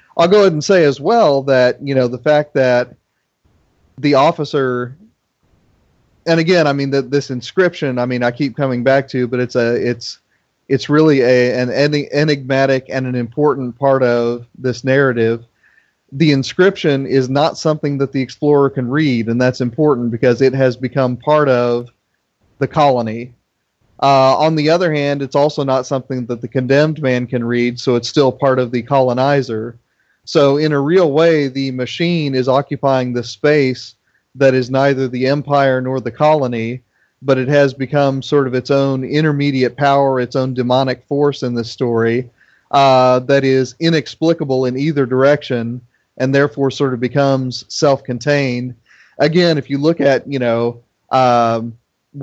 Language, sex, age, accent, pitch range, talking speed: English, male, 30-49, American, 125-145 Hz, 170 wpm